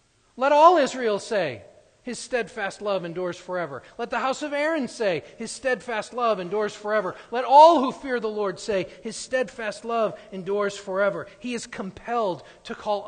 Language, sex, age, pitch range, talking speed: English, male, 40-59, 155-225 Hz, 170 wpm